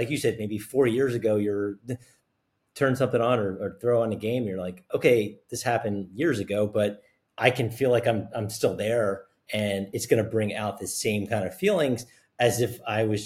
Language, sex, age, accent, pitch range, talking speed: English, male, 30-49, American, 105-130 Hz, 215 wpm